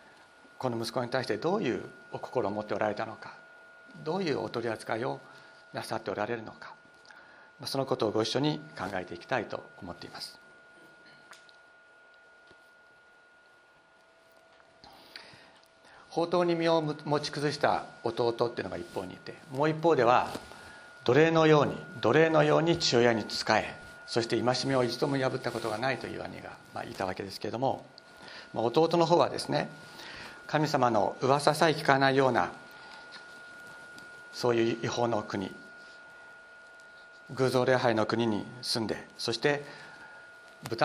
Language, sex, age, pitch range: Japanese, male, 60-79, 115-165 Hz